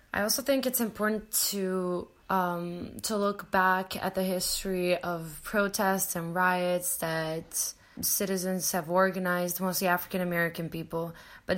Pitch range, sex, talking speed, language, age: 175-200 Hz, female, 135 wpm, English, 20-39